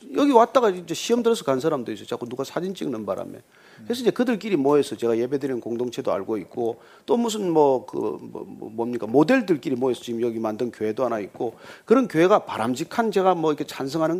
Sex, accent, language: male, native, Korean